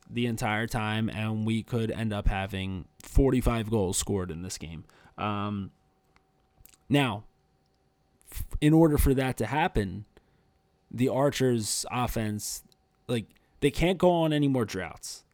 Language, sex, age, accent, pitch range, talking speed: English, male, 20-39, American, 110-130 Hz, 135 wpm